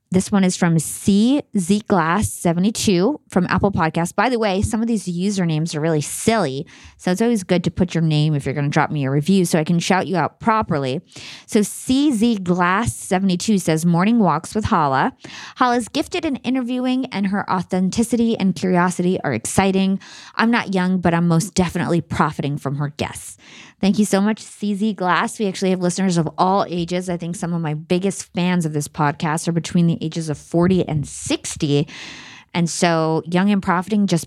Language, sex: English, female